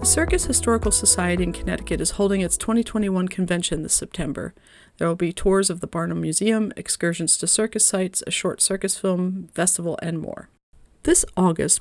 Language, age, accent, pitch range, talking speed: English, 40-59, American, 170-210 Hz, 175 wpm